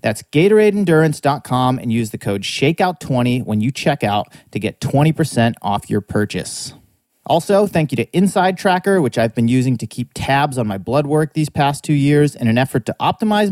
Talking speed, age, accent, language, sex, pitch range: 190 wpm, 30-49, American, English, male, 110-160 Hz